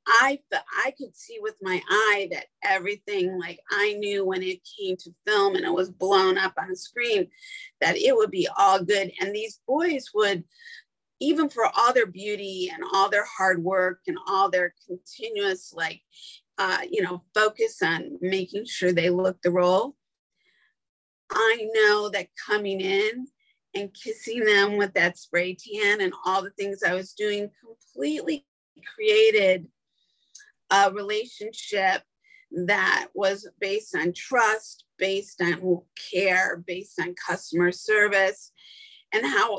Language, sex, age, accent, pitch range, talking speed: English, female, 40-59, American, 185-295 Hz, 145 wpm